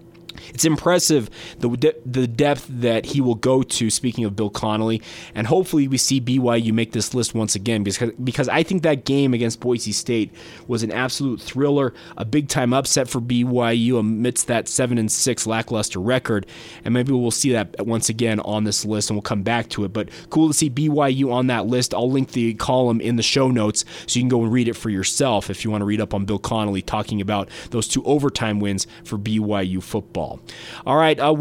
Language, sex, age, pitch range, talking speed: English, male, 20-39, 115-155 Hz, 210 wpm